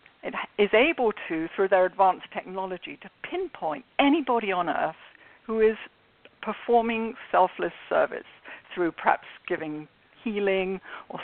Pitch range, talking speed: 180-220 Hz, 125 wpm